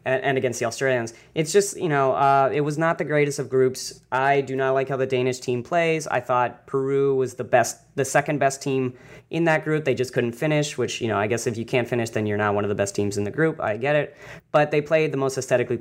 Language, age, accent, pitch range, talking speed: English, 20-39, American, 125-150 Hz, 270 wpm